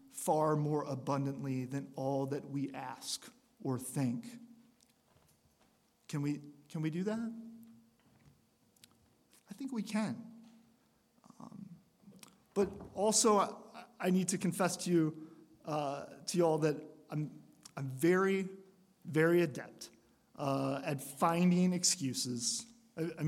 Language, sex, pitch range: English, male, 135-200 Hz